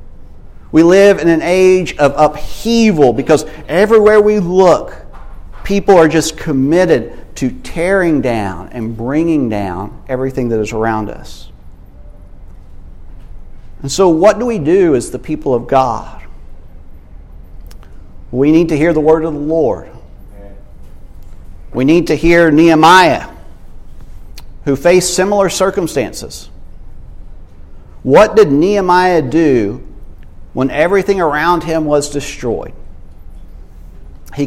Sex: male